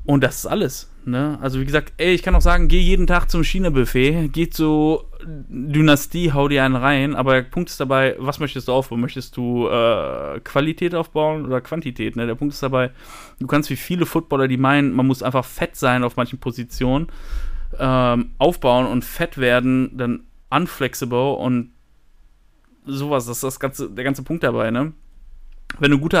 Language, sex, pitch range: German, male, 120-140 Hz